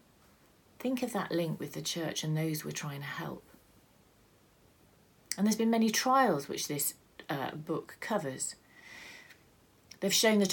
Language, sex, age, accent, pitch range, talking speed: English, female, 40-59, British, 165-195 Hz, 150 wpm